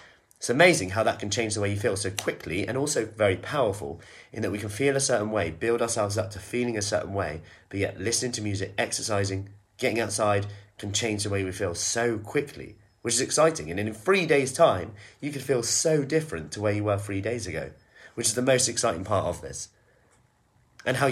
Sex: male